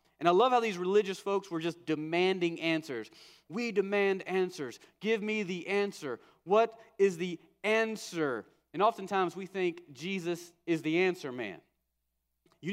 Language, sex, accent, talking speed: English, male, American, 150 wpm